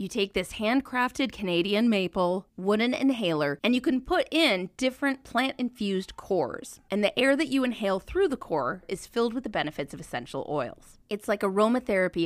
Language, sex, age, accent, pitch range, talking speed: English, female, 20-39, American, 175-265 Hz, 175 wpm